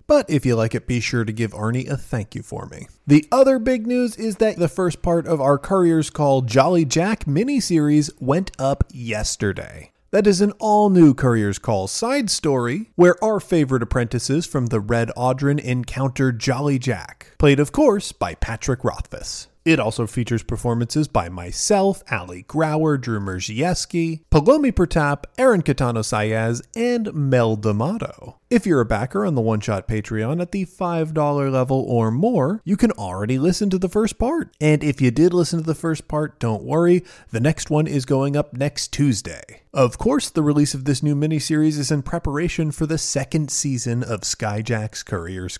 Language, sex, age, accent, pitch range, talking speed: English, male, 30-49, American, 120-170 Hz, 180 wpm